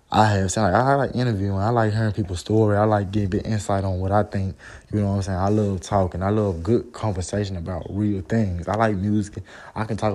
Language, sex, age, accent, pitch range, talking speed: English, male, 20-39, American, 95-110 Hz, 255 wpm